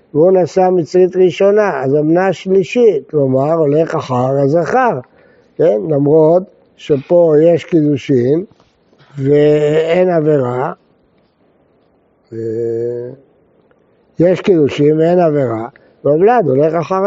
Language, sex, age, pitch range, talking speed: Hebrew, male, 60-79, 150-185 Hz, 90 wpm